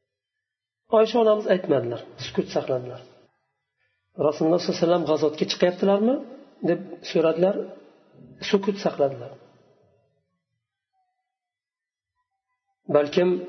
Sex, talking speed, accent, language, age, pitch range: male, 65 wpm, Turkish, Russian, 40-59, 145-200 Hz